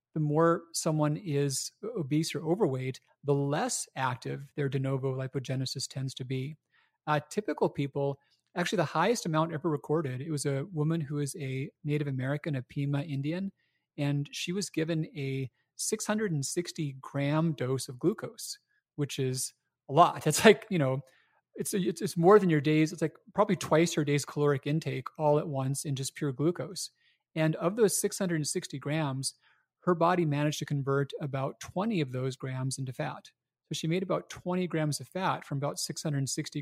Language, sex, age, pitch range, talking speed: English, male, 30-49, 140-170 Hz, 175 wpm